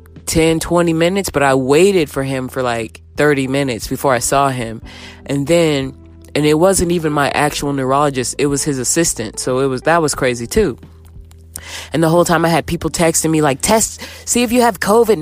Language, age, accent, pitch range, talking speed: English, 20-39, American, 125-160 Hz, 205 wpm